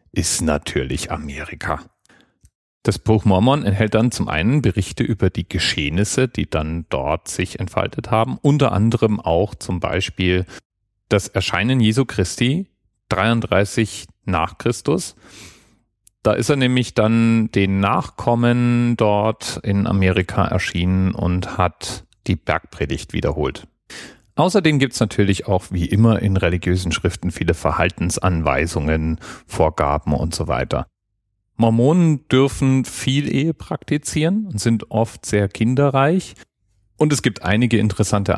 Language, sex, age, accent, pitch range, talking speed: German, male, 40-59, German, 90-115 Hz, 120 wpm